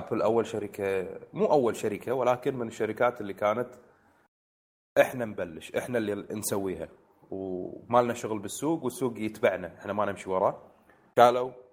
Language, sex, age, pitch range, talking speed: Arabic, male, 30-49, 95-115 Hz, 135 wpm